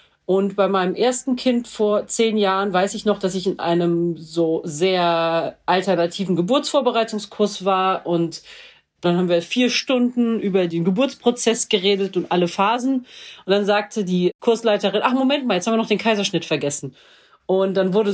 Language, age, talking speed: German, 40-59, 170 wpm